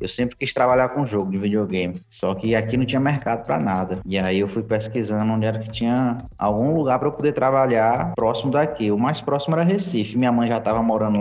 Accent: Brazilian